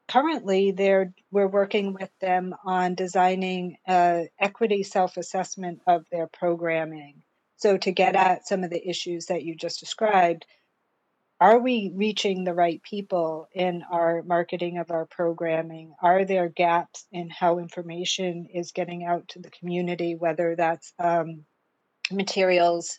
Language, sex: English, female